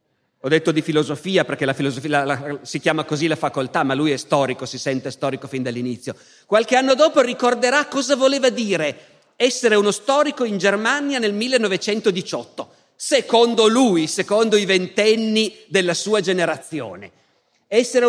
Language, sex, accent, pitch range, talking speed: Italian, male, native, 150-210 Hz, 145 wpm